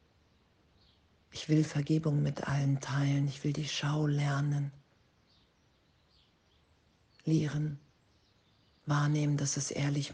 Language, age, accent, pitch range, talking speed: German, 50-69, German, 90-150 Hz, 95 wpm